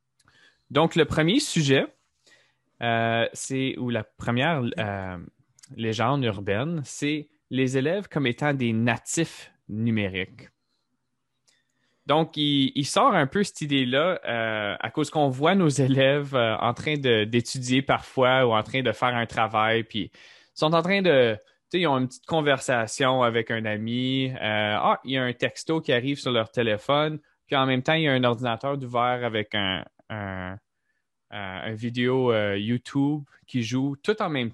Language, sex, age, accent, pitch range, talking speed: French, male, 20-39, Canadian, 115-140 Hz, 170 wpm